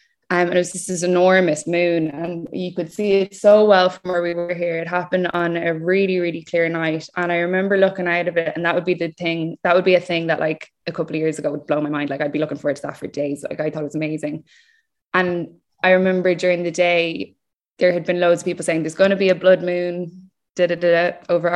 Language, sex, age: English, female, 20-39